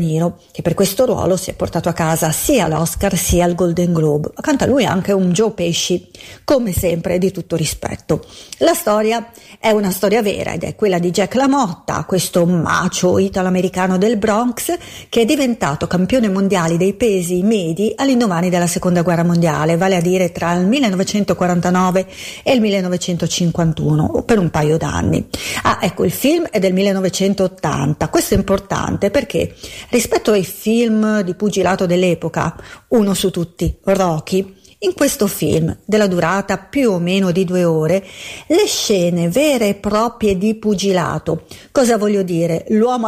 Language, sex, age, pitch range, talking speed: Italian, female, 40-59, 175-215 Hz, 155 wpm